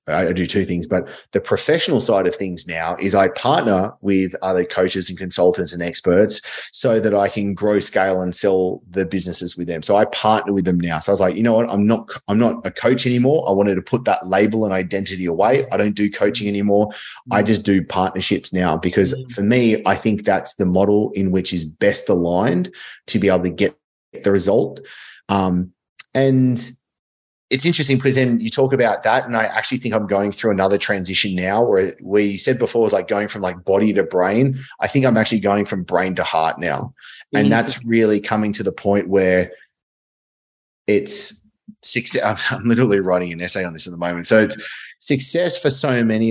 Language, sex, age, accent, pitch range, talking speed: English, male, 30-49, Australian, 95-110 Hz, 210 wpm